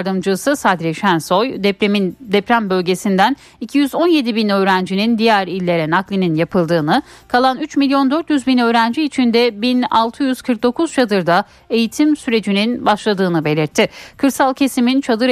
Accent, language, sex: native, Turkish, female